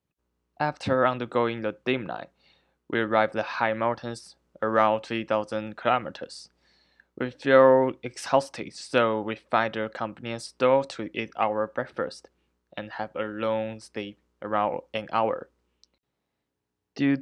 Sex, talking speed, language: male, 125 wpm, English